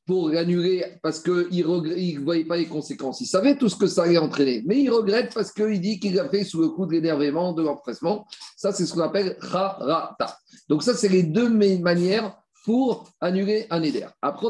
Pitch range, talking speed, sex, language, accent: 165-205 Hz, 220 wpm, male, French, French